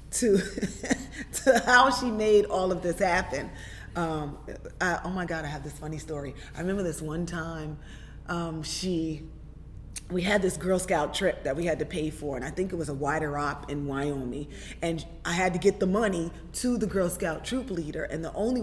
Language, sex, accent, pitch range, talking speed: English, female, American, 160-210 Hz, 205 wpm